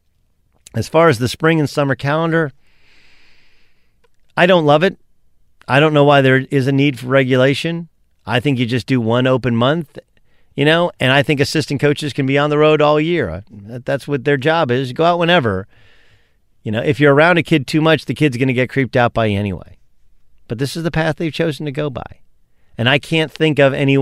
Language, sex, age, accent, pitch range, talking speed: English, male, 40-59, American, 110-155 Hz, 215 wpm